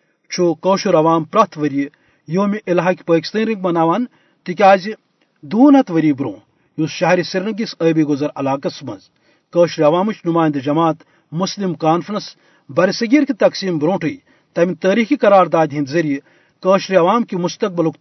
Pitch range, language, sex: 155-195 Hz, Urdu, male